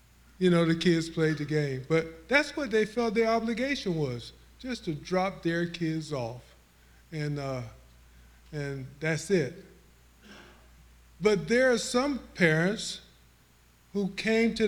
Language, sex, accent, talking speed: English, male, American, 140 wpm